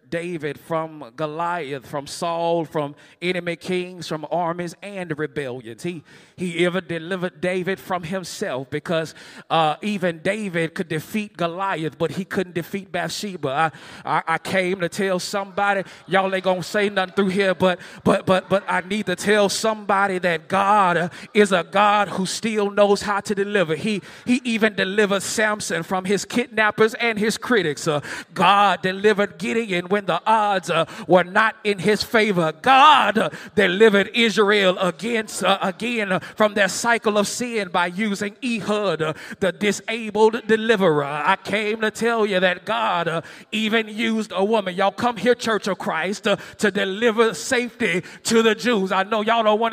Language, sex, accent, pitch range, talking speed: English, male, American, 180-220 Hz, 165 wpm